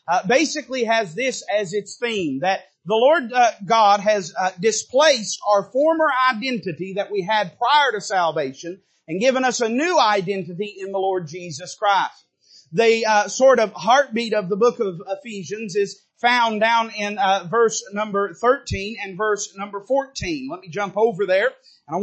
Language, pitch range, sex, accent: English, 200-255 Hz, male, American